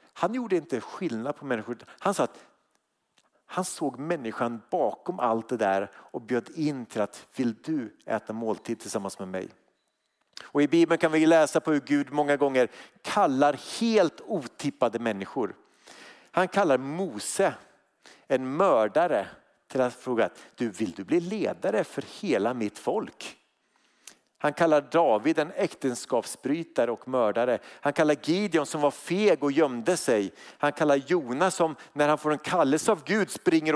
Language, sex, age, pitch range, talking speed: Swedish, male, 50-69, 125-170 Hz, 155 wpm